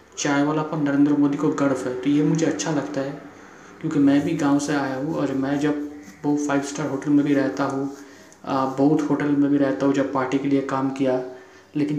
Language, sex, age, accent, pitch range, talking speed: Hindi, male, 20-39, native, 135-150 Hz, 225 wpm